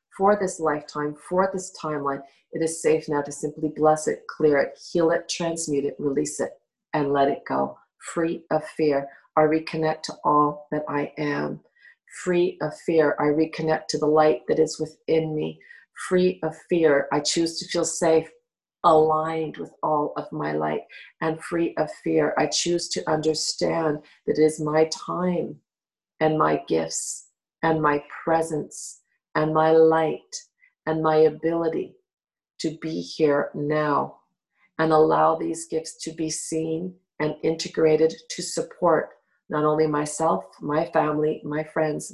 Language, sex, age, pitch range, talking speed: English, female, 40-59, 150-165 Hz, 155 wpm